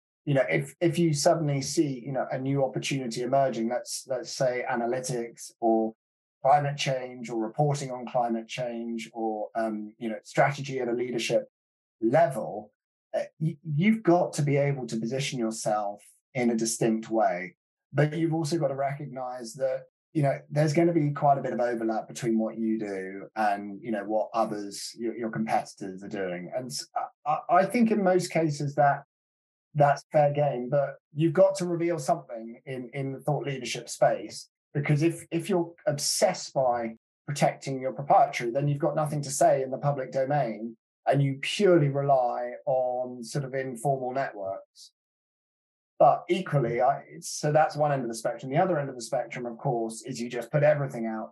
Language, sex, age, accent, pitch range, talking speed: English, male, 20-39, British, 115-150 Hz, 180 wpm